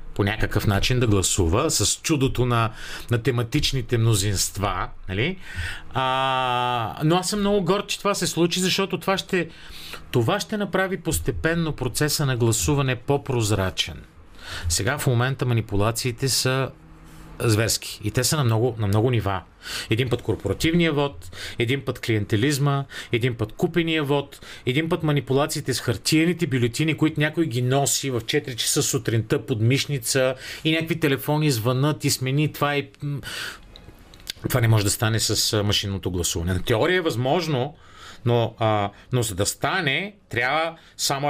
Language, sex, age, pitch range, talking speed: Bulgarian, male, 40-59, 105-140 Hz, 150 wpm